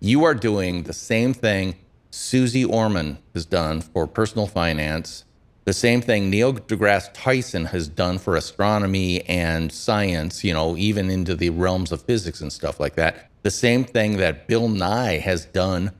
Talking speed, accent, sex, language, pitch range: 170 wpm, American, male, English, 90-120 Hz